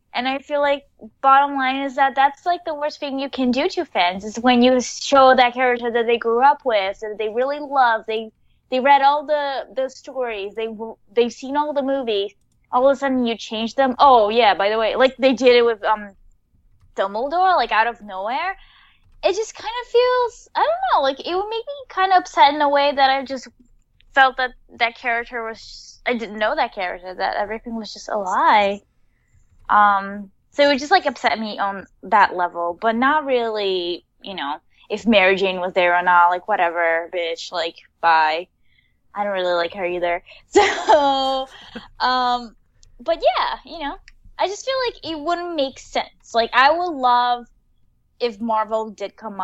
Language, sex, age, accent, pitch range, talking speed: English, female, 10-29, American, 205-280 Hz, 200 wpm